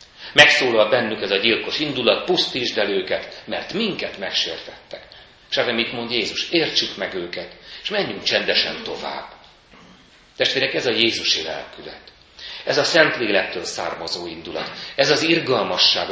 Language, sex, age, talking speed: Hungarian, male, 40-59, 140 wpm